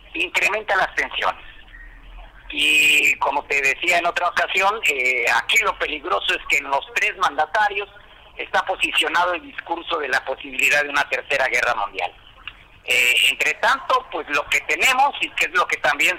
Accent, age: Mexican, 50-69